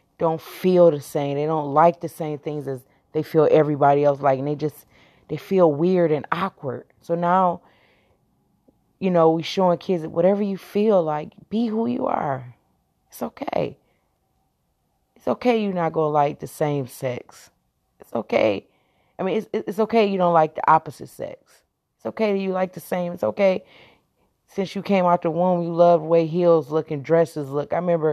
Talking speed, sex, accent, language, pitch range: 190 wpm, female, American, English, 145-180 Hz